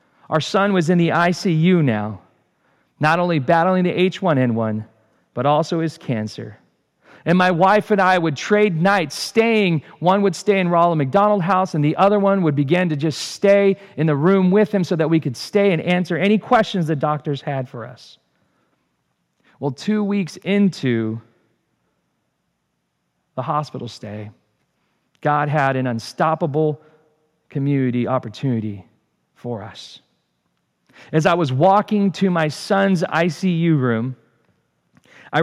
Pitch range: 135-190 Hz